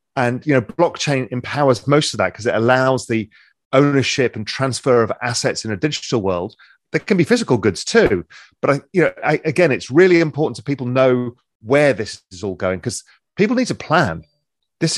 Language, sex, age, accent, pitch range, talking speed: English, male, 40-59, British, 105-145 Hz, 200 wpm